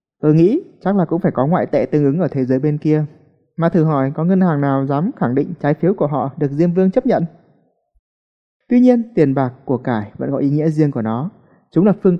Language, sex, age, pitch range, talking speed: Vietnamese, male, 20-39, 135-180 Hz, 250 wpm